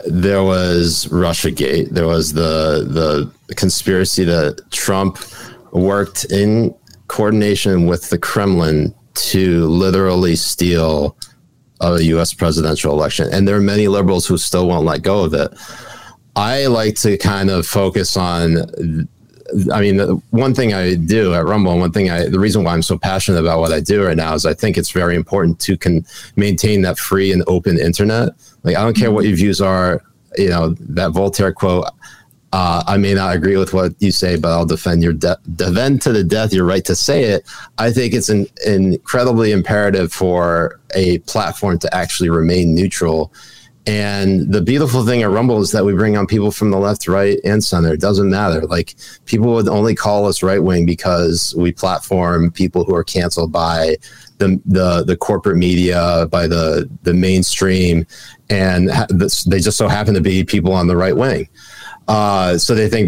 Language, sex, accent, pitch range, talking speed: English, male, American, 85-100 Hz, 185 wpm